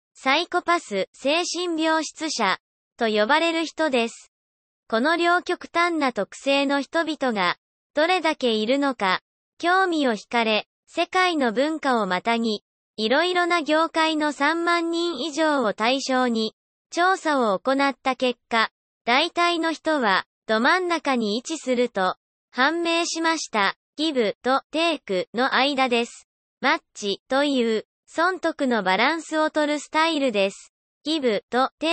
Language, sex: Japanese, male